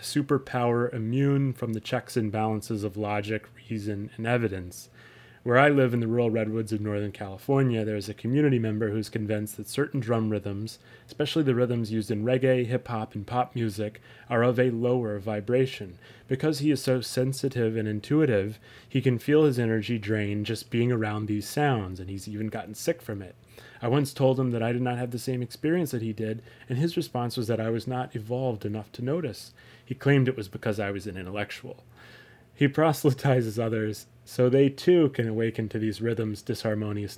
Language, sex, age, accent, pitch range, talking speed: English, male, 30-49, American, 110-130 Hz, 195 wpm